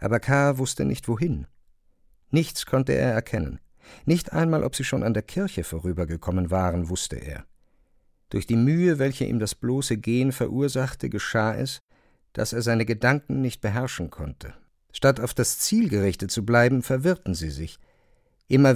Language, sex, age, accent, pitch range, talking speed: German, male, 50-69, German, 95-125 Hz, 160 wpm